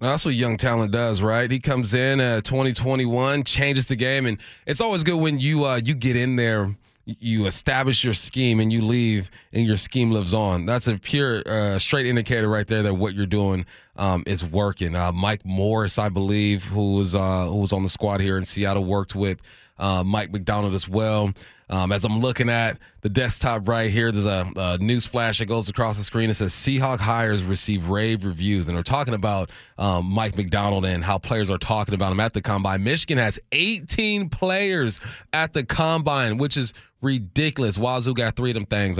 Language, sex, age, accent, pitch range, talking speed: English, male, 30-49, American, 100-125 Hz, 210 wpm